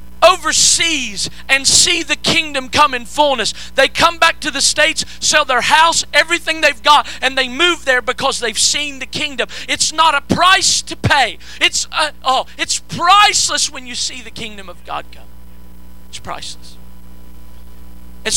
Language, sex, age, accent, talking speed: English, male, 40-59, American, 165 wpm